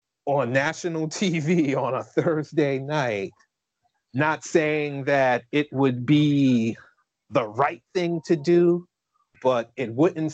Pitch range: 120-150 Hz